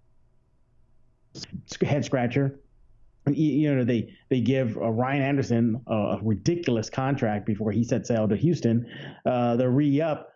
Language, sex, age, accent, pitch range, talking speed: English, male, 30-49, American, 115-150 Hz, 125 wpm